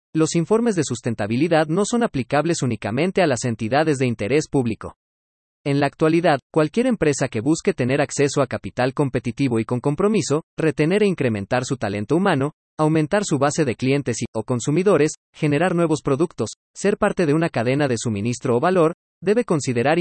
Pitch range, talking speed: 120-165 Hz, 170 wpm